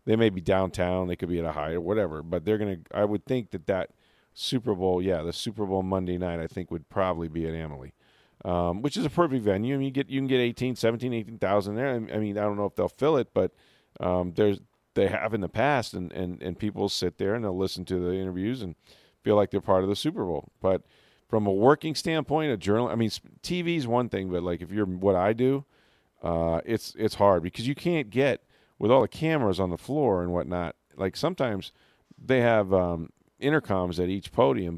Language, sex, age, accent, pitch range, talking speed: English, male, 40-59, American, 90-115 Hz, 235 wpm